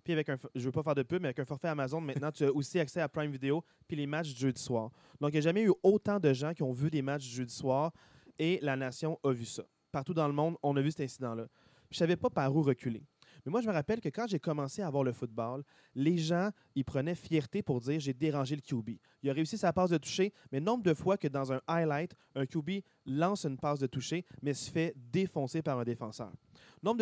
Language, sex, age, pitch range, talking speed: French, male, 30-49, 135-165 Hz, 280 wpm